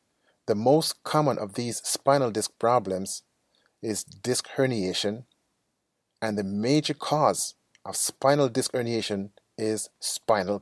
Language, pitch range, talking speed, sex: English, 100-130 Hz, 120 wpm, male